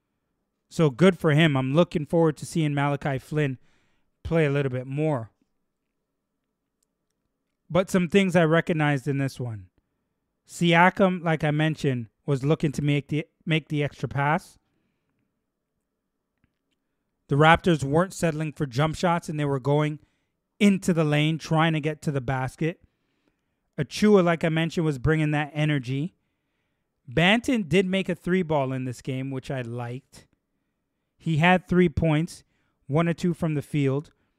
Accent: American